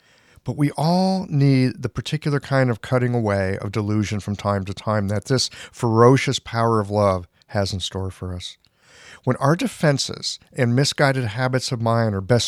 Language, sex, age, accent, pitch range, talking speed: English, male, 50-69, American, 105-135 Hz, 180 wpm